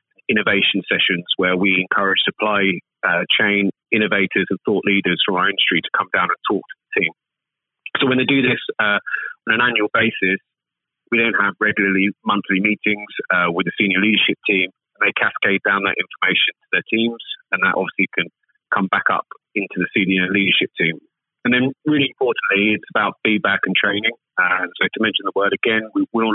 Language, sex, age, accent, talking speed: English, male, 30-49, British, 195 wpm